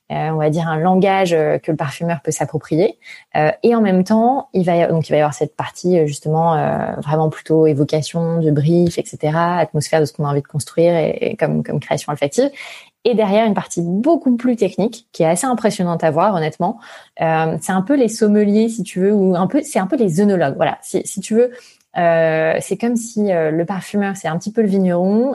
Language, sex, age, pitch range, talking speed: French, female, 20-39, 165-205 Hz, 230 wpm